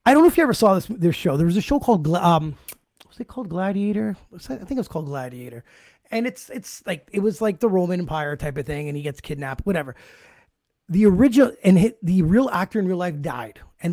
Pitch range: 170-230 Hz